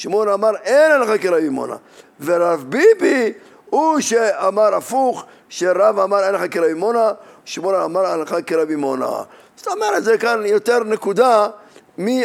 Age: 50-69